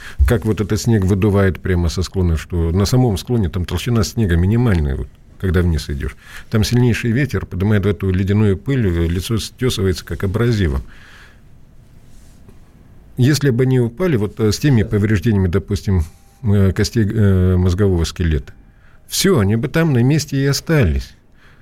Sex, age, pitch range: male, 50-69, 90-115 Hz